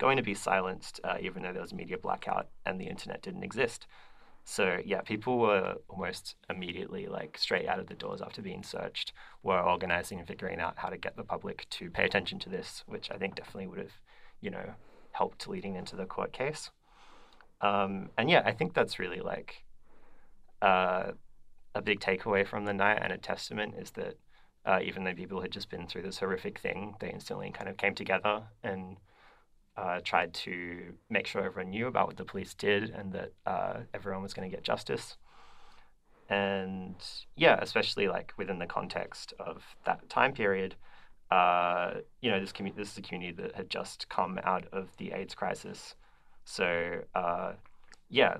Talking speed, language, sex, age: 185 wpm, English, male, 30-49